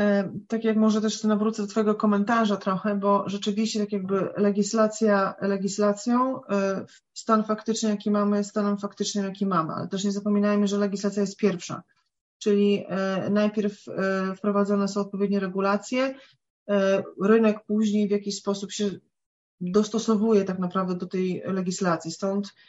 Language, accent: Polish, native